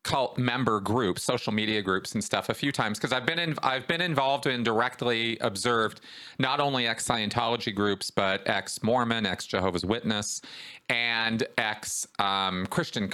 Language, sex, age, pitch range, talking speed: English, male, 40-59, 105-140 Hz, 145 wpm